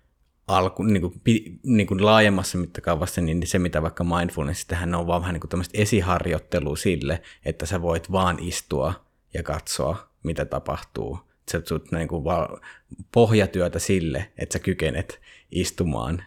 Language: Finnish